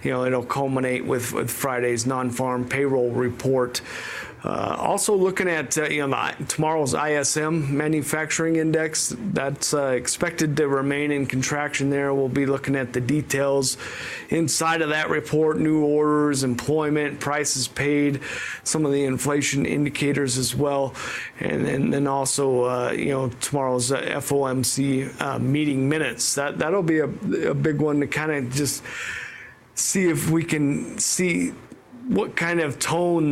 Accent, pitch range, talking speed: American, 135-155 Hz, 150 wpm